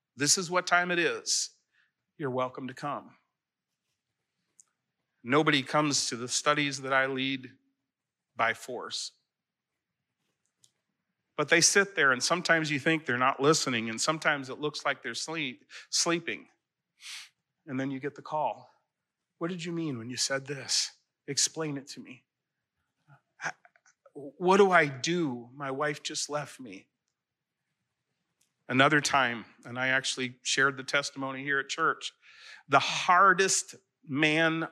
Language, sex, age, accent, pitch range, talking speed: English, male, 40-59, American, 130-160 Hz, 135 wpm